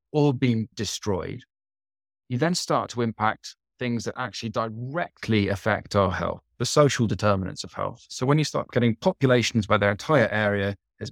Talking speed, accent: 165 wpm, British